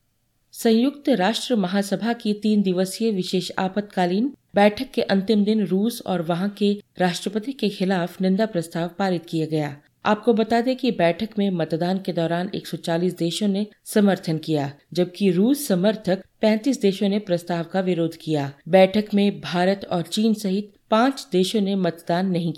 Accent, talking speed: native, 155 wpm